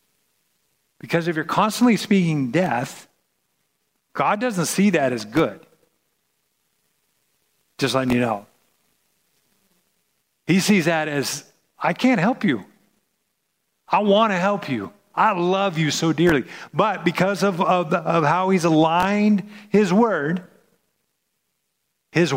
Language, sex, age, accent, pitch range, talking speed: English, male, 50-69, American, 150-200 Hz, 120 wpm